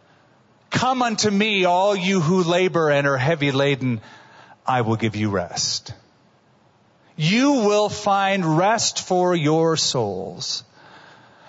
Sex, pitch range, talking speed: male, 135-180 Hz, 120 wpm